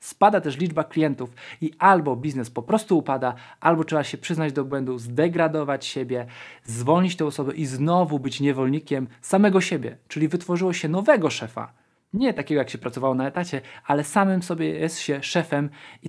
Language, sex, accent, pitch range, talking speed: Polish, male, native, 130-175 Hz, 170 wpm